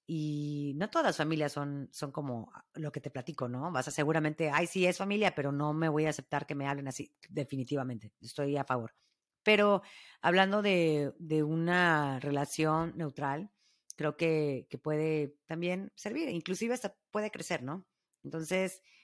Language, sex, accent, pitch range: Spanish, female, Mexican, 135-160 Hz